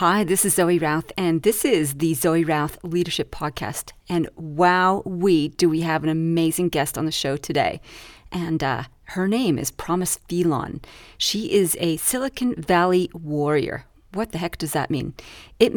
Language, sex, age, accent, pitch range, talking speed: English, female, 40-59, American, 160-190 Hz, 175 wpm